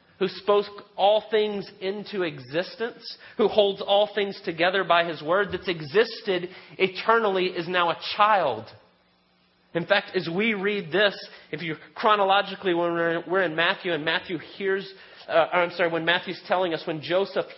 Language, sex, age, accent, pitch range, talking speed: English, male, 30-49, American, 150-195 Hz, 155 wpm